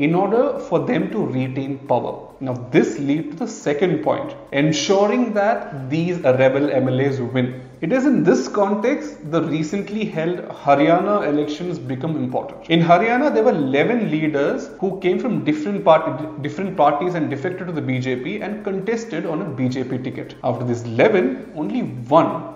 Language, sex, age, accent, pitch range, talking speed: Hindi, male, 30-49, native, 140-200 Hz, 170 wpm